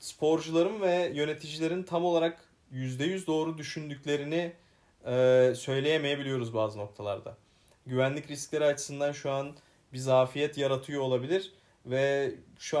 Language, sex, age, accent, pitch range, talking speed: Turkish, male, 30-49, native, 115-145 Hz, 110 wpm